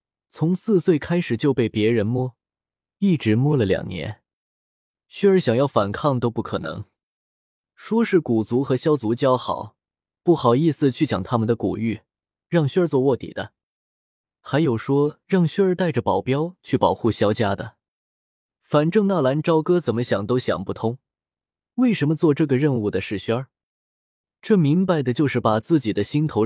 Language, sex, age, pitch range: Chinese, male, 20-39, 110-160 Hz